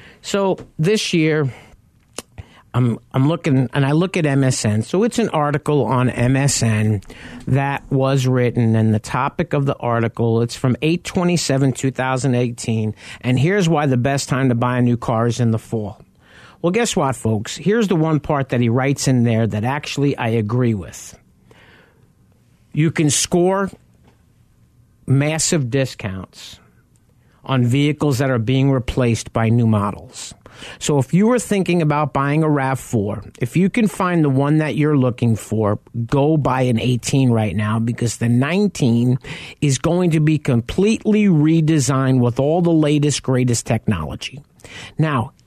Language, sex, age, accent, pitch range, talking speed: English, male, 50-69, American, 120-155 Hz, 160 wpm